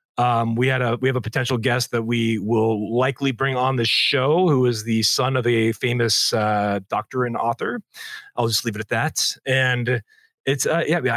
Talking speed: 205 wpm